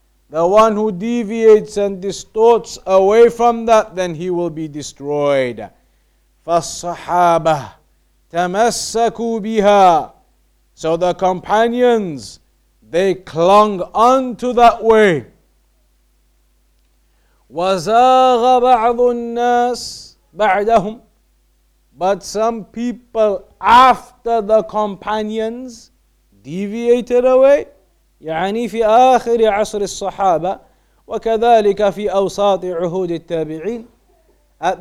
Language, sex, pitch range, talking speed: English, male, 180-230 Hz, 70 wpm